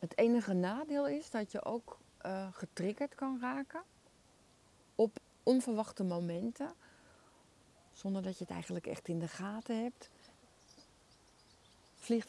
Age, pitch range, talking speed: 40-59, 170-205 Hz, 120 wpm